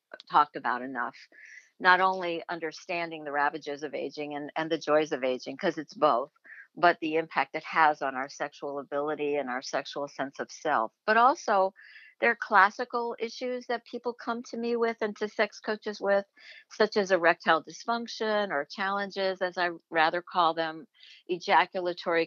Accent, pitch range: American, 150-210 Hz